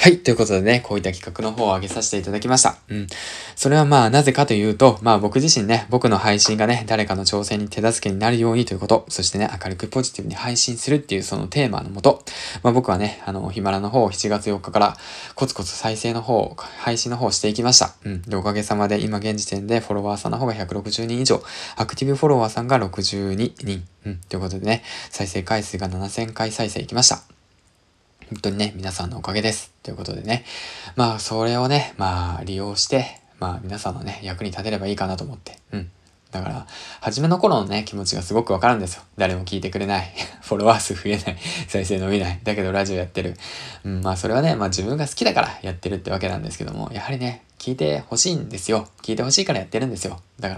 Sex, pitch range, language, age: male, 95-115 Hz, Japanese, 20-39